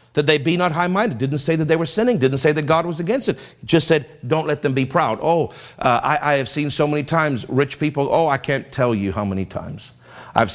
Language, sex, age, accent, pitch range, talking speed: English, male, 50-69, American, 120-150 Hz, 260 wpm